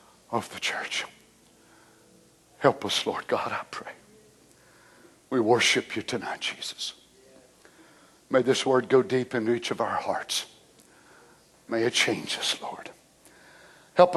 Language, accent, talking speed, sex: English, American, 125 wpm, male